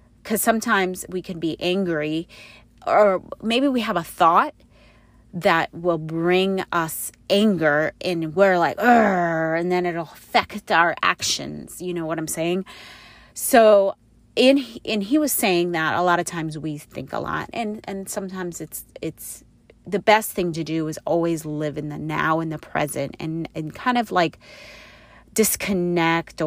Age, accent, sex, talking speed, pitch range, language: 30-49, American, female, 160 wpm, 155-185 Hz, English